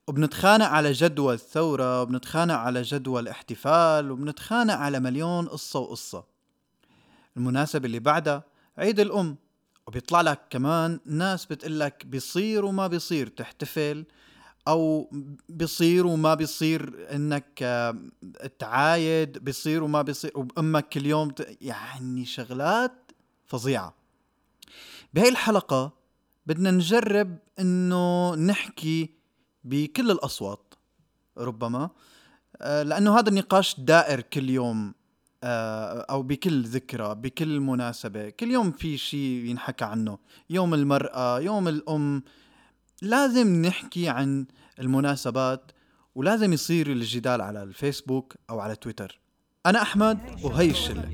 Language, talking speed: Arabic, 105 wpm